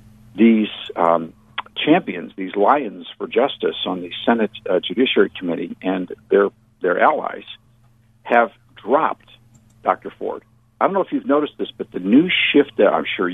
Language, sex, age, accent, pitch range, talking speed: English, male, 50-69, American, 110-150 Hz, 160 wpm